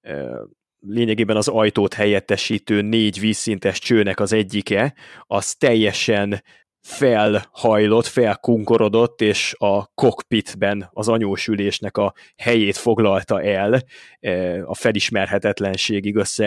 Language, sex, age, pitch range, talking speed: Hungarian, male, 20-39, 100-115 Hz, 85 wpm